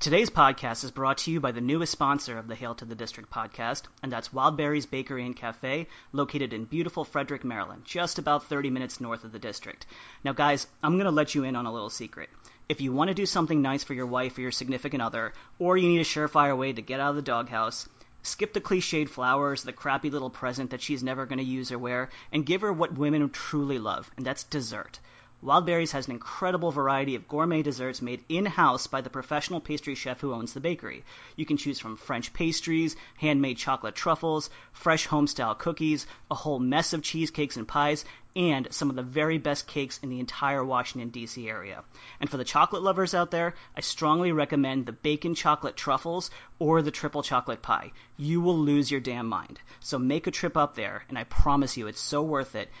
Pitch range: 125-155 Hz